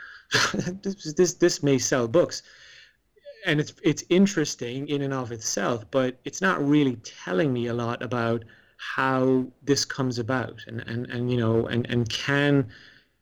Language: English